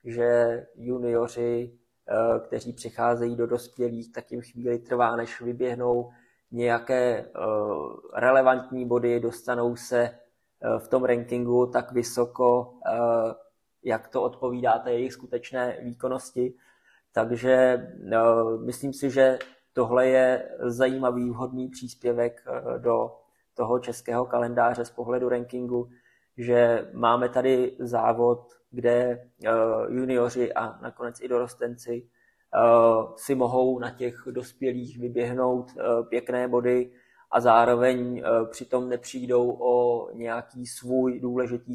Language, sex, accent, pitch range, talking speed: Czech, male, native, 120-125 Hz, 100 wpm